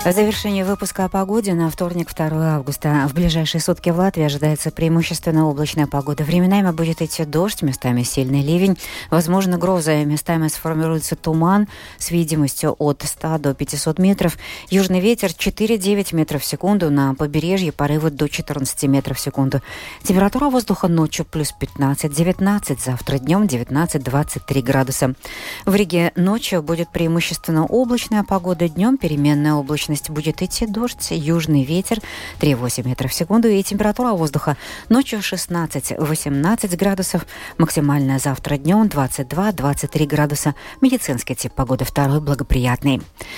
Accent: native